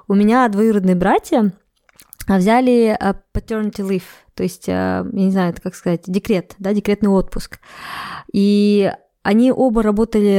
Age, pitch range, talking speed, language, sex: 20-39, 185-225 Hz, 125 wpm, Russian, female